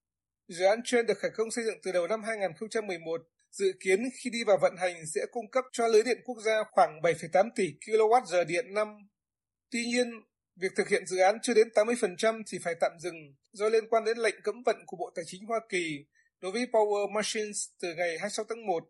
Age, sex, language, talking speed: 20-39, male, Vietnamese, 220 wpm